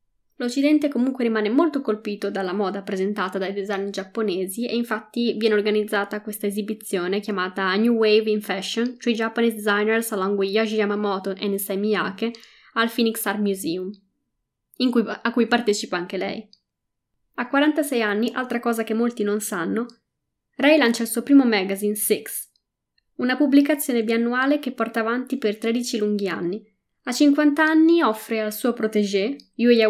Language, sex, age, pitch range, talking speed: Italian, female, 20-39, 205-245 Hz, 155 wpm